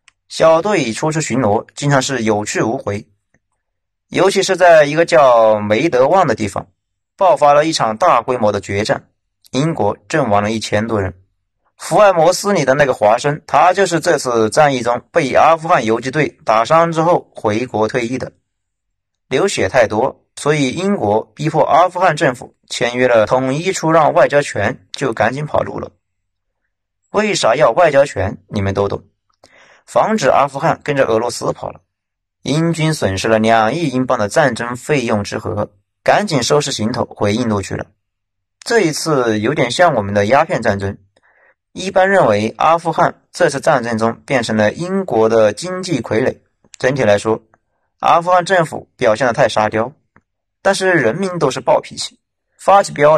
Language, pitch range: Chinese, 100-150 Hz